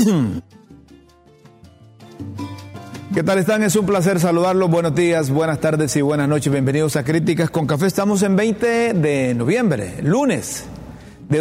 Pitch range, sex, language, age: 140-185 Hz, male, Spanish, 40-59